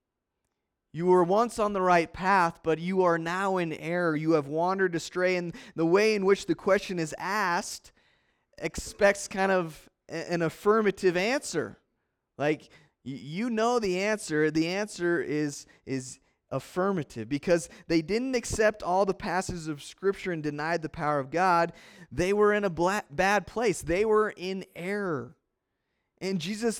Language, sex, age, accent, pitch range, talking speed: English, male, 20-39, American, 165-200 Hz, 155 wpm